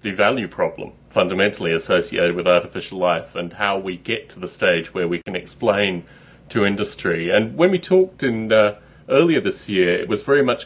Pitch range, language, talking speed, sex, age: 100-130 Hz, English, 190 wpm, male, 30-49